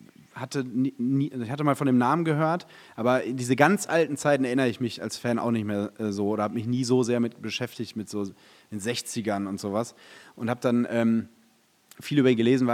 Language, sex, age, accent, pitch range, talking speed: German, male, 30-49, German, 120-140 Hz, 210 wpm